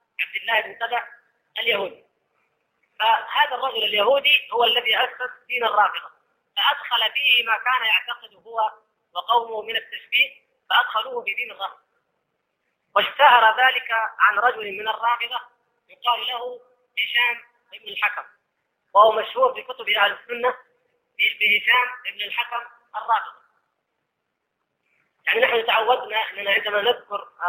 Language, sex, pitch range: Arabic, female, 220-290 Hz